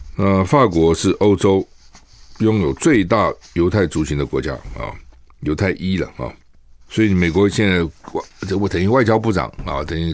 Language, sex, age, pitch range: Chinese, male, 60-79, 85-110 Hz